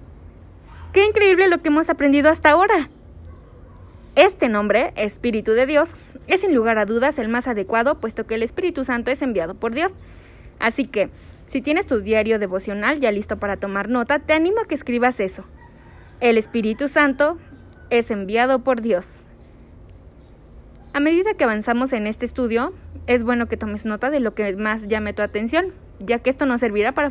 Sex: female